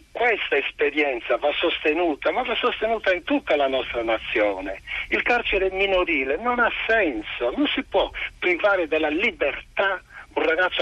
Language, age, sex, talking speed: Italian, 60-79, male, 145 wpm